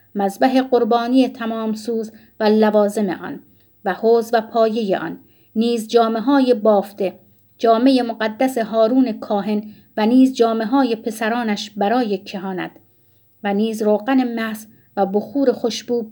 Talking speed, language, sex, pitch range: 125 wpm, Persian, female, 210-255 Hz